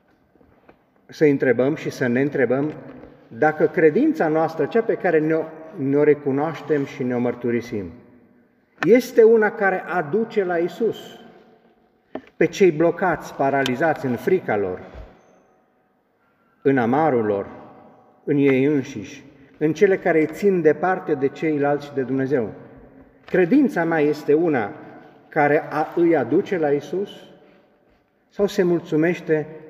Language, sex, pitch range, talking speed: Romanian, male, 135-180 Hz, 125 wpm